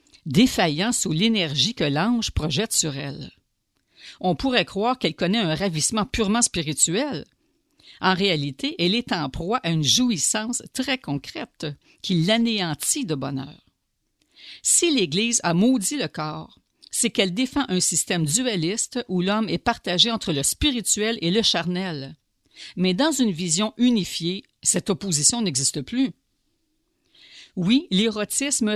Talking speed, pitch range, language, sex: 135 wpm, 160-225 Hz, French, female